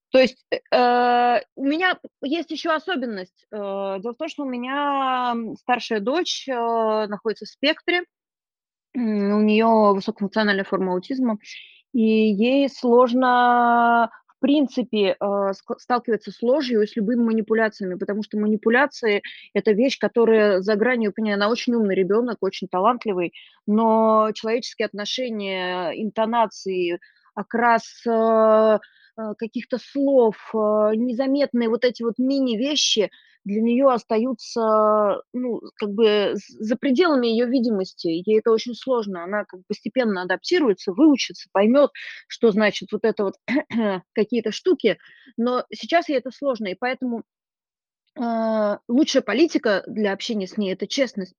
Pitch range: 210-255 Hz